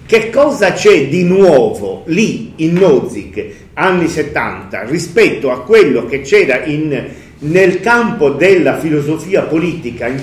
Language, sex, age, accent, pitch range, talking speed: Italian, male, 40-59, native, 140-220 Hz, 130 wpm